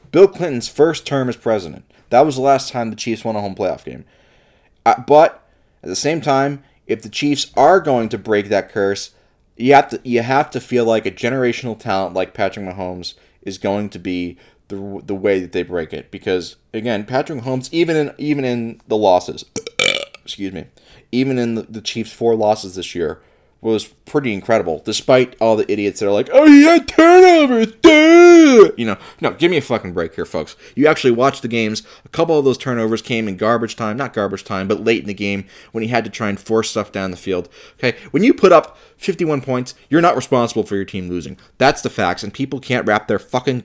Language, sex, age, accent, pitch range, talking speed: English, male, 30-49, American, 100-135 Hz, 215 wpm